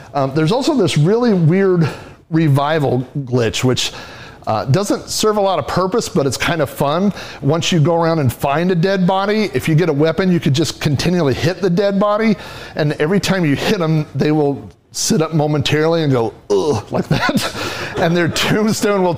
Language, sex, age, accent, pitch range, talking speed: English, male, 40-59, American, 135-170 Hz, 195 wpm